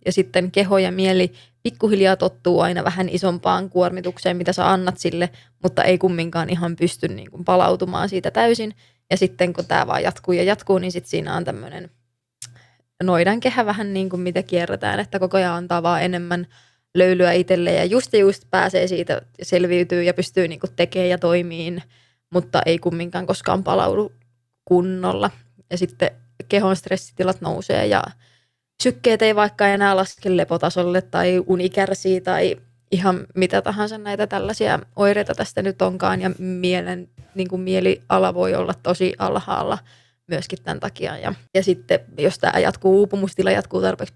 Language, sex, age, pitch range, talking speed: Finnish, female, 20-39, 175-190 Hz, 155 wpm